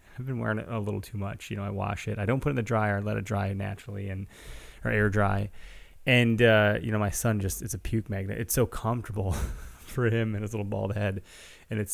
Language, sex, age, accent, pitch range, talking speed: English, male, 20-39, American, 100-120 Hz, 260 wpm